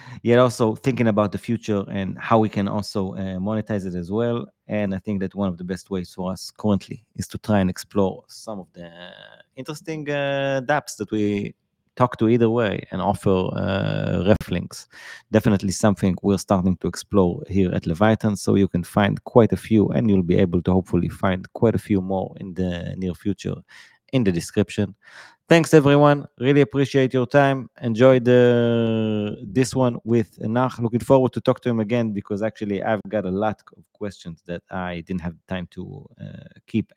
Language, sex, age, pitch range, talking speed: English, male, 30-49, 95-125 Hz, 190 wpm